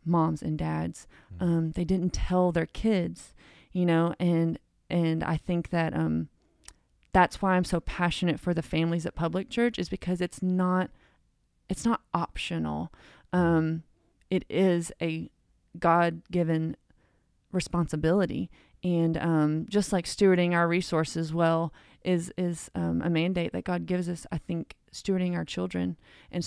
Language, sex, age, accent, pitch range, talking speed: English, female, 30-49, American, 160-180 Hz, 145 wpm